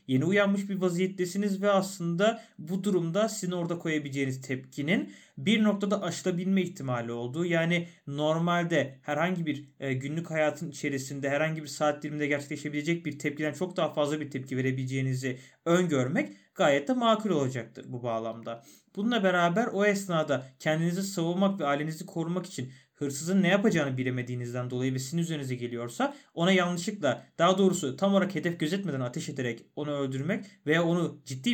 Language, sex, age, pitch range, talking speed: Turkish, male, 30-49, 135-185 Hz, 150 wpm